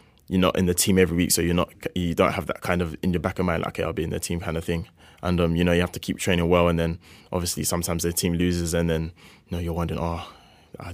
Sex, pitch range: male, 85-90 Hz